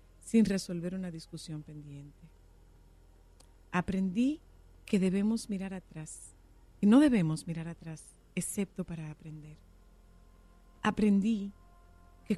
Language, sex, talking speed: Spanish, female, 95 wpm